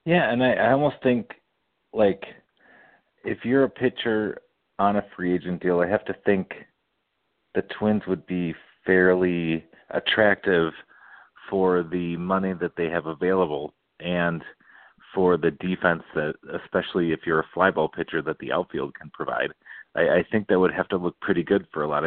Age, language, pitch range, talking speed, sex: 40-59, English, 80-95 Hz, 170 wpm, male